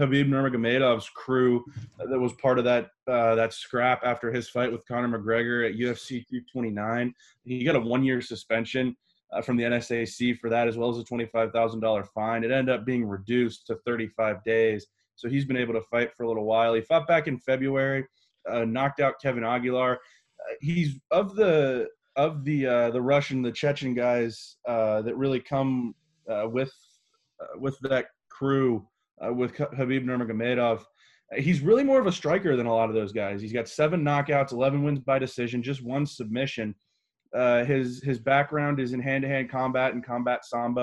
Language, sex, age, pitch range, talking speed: English, male, 20-39, 120-140 Hz, 185 wpm